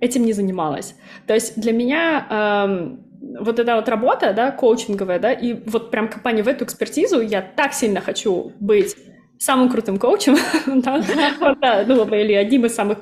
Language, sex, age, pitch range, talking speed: Russian, female, 20-39, 215-270 Hz, 160 wpm